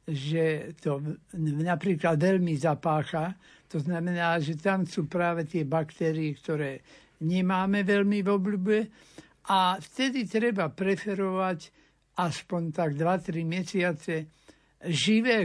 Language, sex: Slovak, male